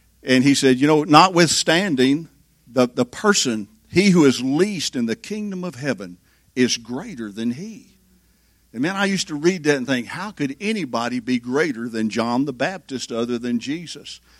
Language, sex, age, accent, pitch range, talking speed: English, male, 50-69, American, 125-165 Hz, 180 wpm